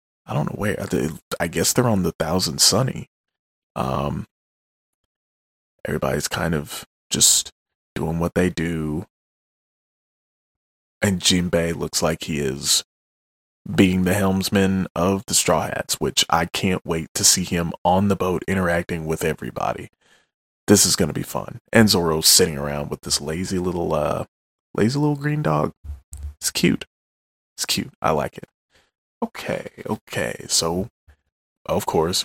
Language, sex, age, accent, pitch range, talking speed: English, male, 20-39, American, 70-95 Hz, 145 wpm